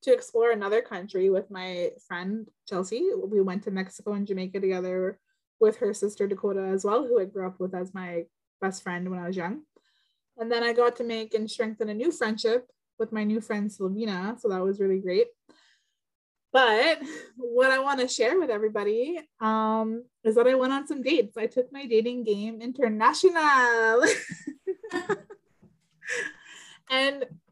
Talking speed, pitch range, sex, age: 170 wpm, 190-250 Hz, female, 20-39